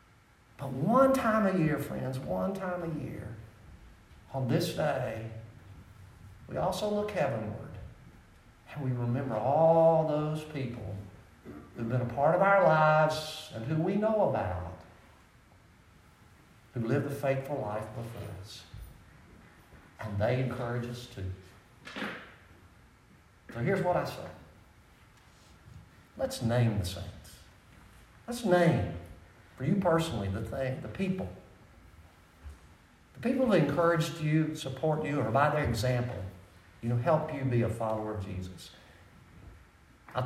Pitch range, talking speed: 100-155 Hz, 130 wpm